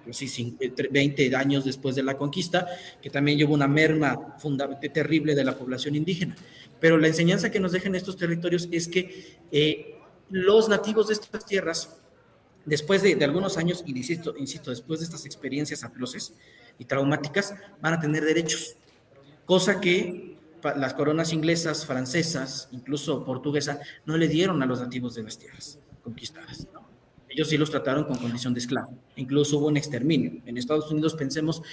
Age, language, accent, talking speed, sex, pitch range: 40-59, Spanish, Mexican, 165 wpm, male, 135-165 Hz